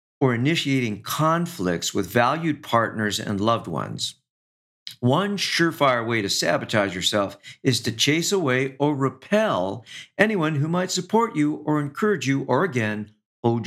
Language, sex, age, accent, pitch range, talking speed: English, male, 50-69, American, 110-145 Hz, 140 wpm